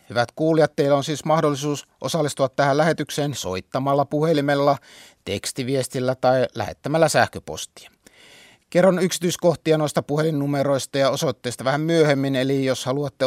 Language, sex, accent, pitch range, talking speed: Finnish, male, native, 125-150 Hz, 120 wpm